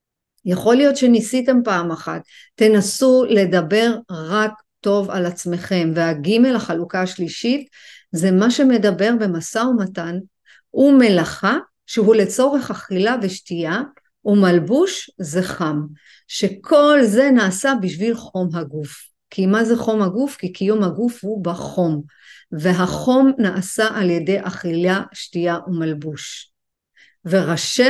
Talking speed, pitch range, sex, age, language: 110 wpm, 180-245 Hz, female, 50-69, Hebrew